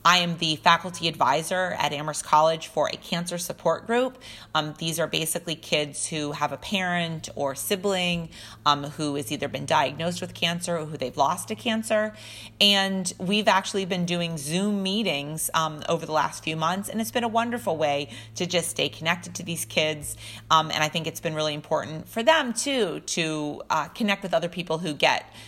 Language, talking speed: English, 195 wpm